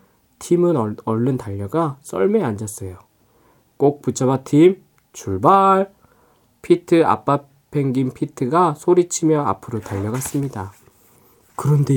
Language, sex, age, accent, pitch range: Korean, male, 20-39, native, 115-155 Hz